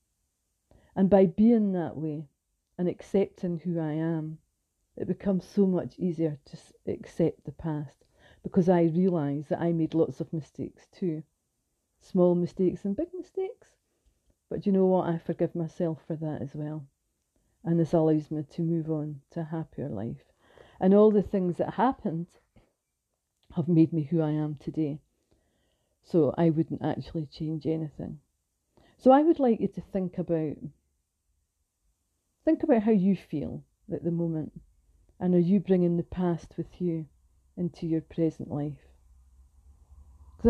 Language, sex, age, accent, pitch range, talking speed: English, female, 40-59, British, 150-185 Hz, 155 wpm